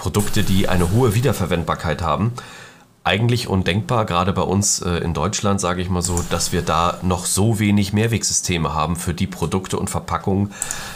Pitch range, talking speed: 85-100 Hz, 165 wpm